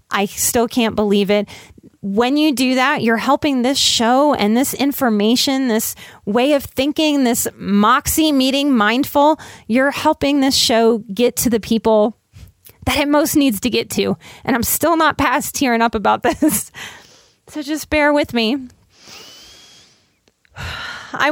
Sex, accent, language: female, American, English